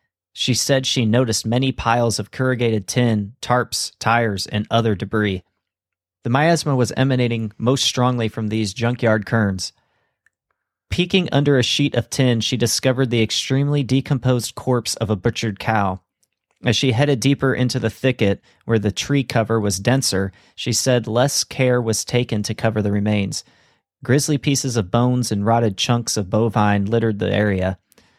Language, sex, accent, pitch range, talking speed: English, male, American, 105-125 Hz, 160 wpm